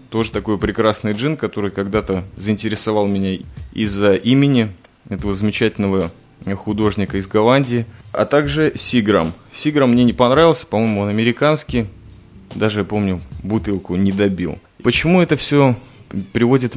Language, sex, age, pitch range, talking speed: Russian, male, 20-39, 100-120 Hz, 120 wpm